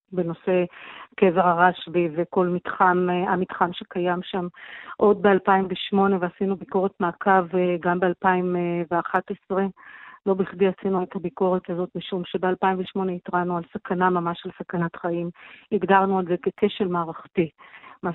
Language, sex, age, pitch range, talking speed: English, female, 40-59, 180-195 Hz, 115 wpm